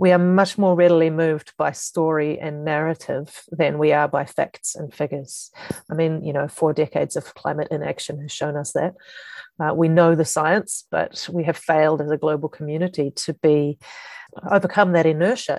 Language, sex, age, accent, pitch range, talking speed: English, female, 30-49, Australian, 150-175 Hz, 185 wpm